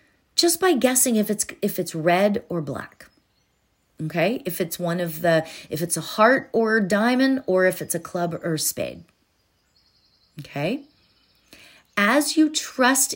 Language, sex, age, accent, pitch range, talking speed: English, female, 40-59, American, 175-245 Hz, 160 wpm